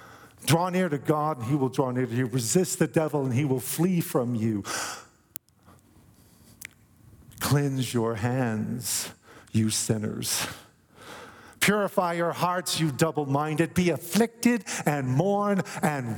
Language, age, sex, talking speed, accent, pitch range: English, 50-69, male, 130 wpm, American, 130-195 Hz